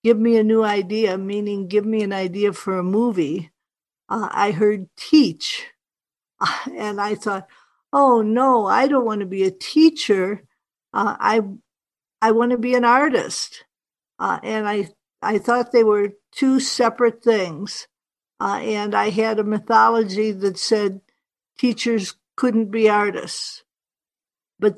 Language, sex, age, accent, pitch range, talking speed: English, female, 60-79, American, 205-235 Hz, 150 wpm